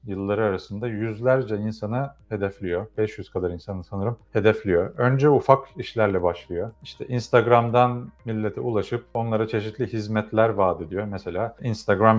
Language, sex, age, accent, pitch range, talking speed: Turkish, male, 40-59, native, 100-120 Hz, 125 wpm